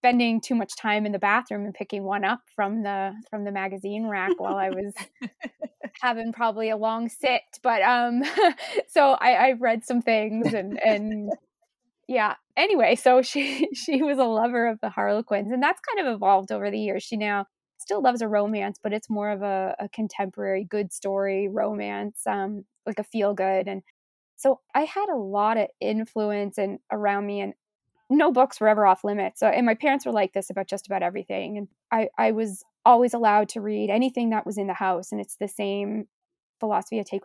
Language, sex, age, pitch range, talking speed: English, female, 20-39, 200-235 Hz, 200 wpm